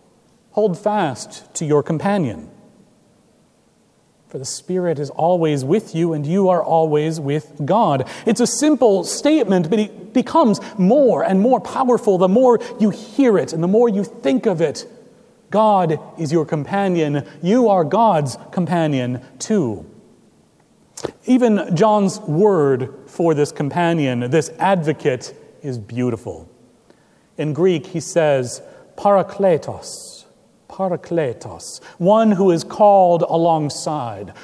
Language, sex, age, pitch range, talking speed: English, male, 40-59, 150-210 Hz, 125 wpm